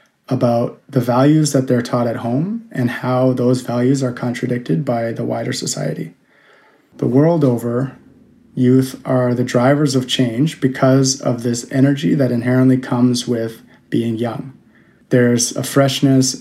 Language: English